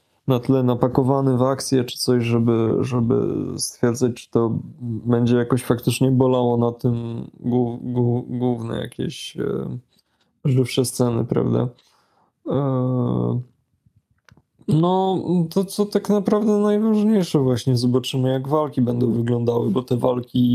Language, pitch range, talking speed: Polish, 120-145 Hz, 125 wpm